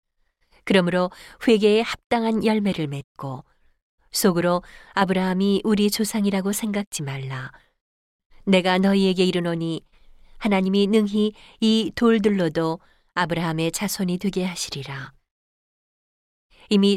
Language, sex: Korean, female